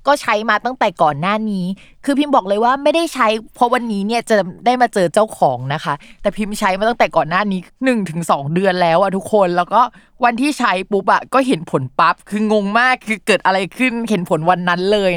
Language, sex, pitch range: Thai, female, 180-240 Hz